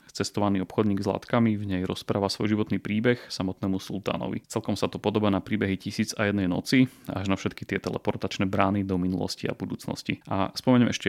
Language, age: Slovak, 30-49